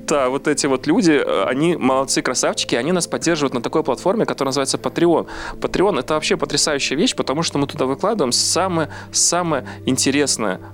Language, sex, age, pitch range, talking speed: Russian, male, 30-49, 115-140 Hz, 160 wpm